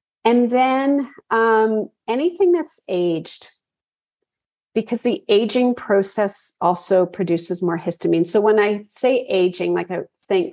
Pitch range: 185-235 Hz